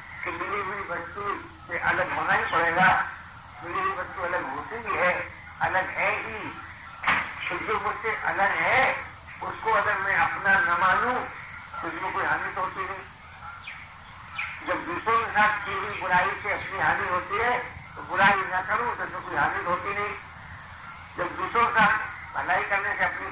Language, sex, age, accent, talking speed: Hindi, male, 60-79, native, 165 wpm